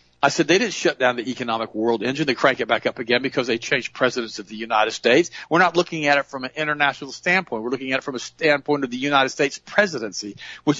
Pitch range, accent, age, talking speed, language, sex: 115-175 Hz, American, 50-69, 255 wpm, English, male